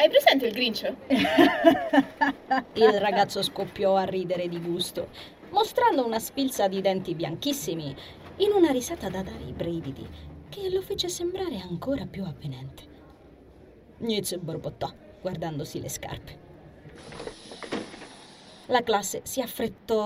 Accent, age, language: native, 20-39, Italian